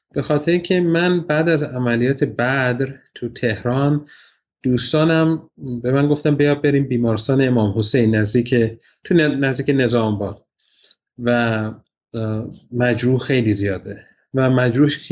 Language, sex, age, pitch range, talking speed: Persian, male, 30-49, 115-140 Hz, 115 wpm